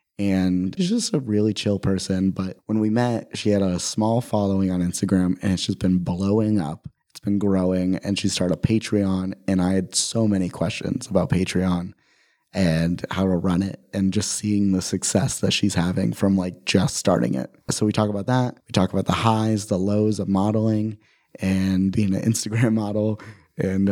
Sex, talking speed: male, 195 wpm